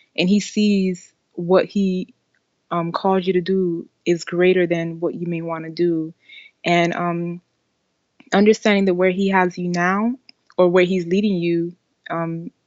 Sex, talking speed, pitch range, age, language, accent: female, 160 wpm, 175-195 Hz, 20-39, English, American